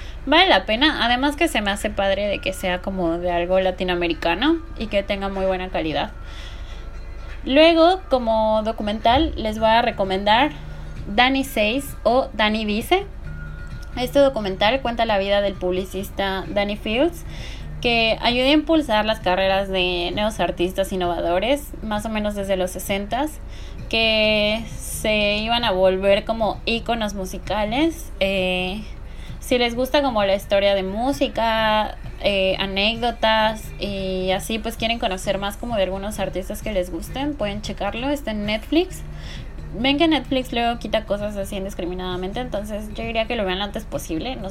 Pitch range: 190-240 Hz